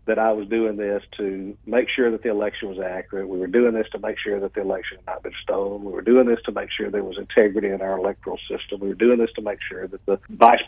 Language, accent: English, American